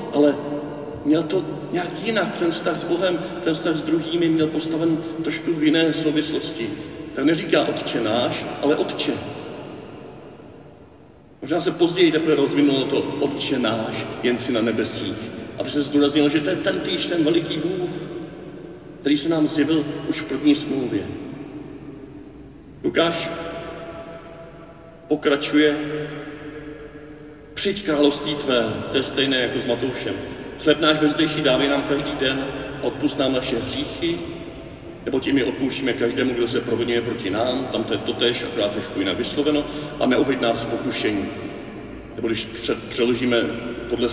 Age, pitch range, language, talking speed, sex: 50-69, 125-165 Hz, Czech, 140 wpm, male